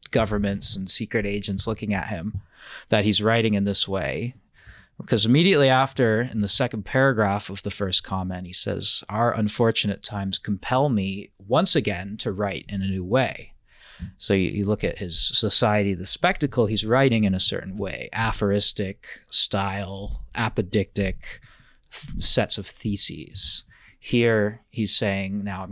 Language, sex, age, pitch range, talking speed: English, male, 30-49, 100-120 Hz, 150 wpm